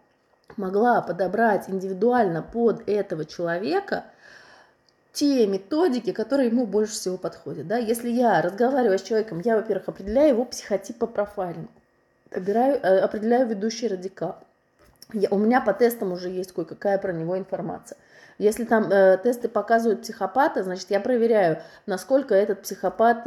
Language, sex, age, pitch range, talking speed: Russian, female, 20-39, 175-235 Hz, 130 wpm